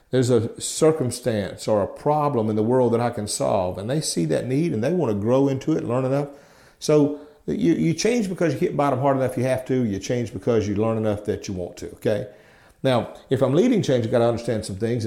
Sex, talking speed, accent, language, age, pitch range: male, 245 wpm, American, English, 50-69, 110-140 Hz